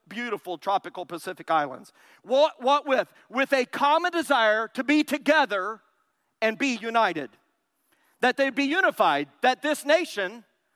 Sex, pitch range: male, 225-300 Hz